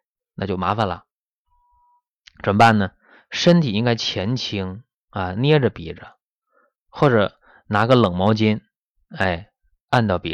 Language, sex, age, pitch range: Chinese, male, 20-39, 90-130 Hz